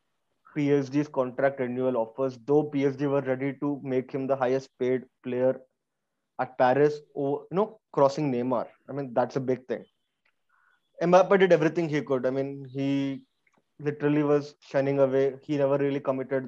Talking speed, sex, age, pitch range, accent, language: 160 wpm, male, 20-39, 130-150 Hz, Indian, English